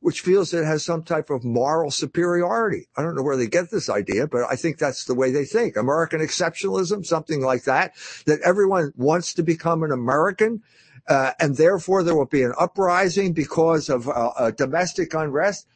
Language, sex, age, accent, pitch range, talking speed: English, male, 60-79, American, 140-195 Hz, 195 wpm